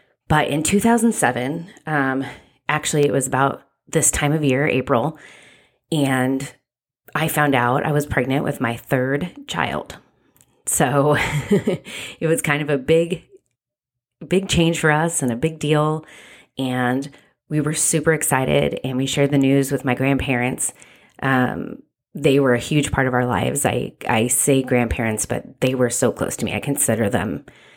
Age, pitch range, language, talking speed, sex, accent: 30-49, 125-145 Hz, English, 160 wpm, female, American